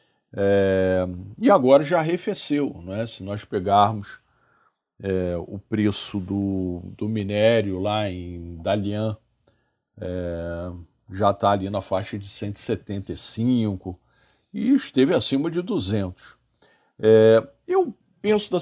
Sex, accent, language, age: male, Brazilian, Portuguese, 40-59